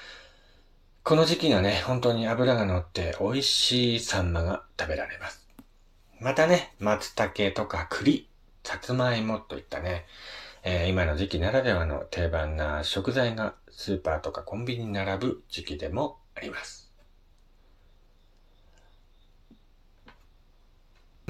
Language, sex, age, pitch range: Japanese, male, 40-59, 80-110 Hz